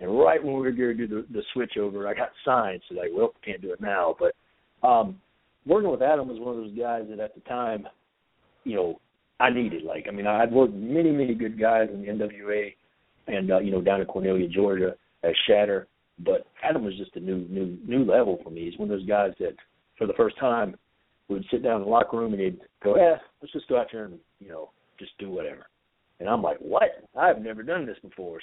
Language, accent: English, American